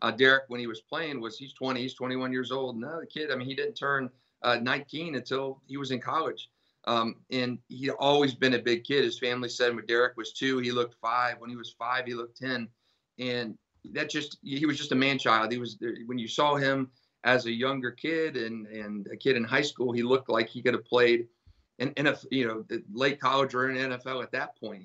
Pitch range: 115-130 Hz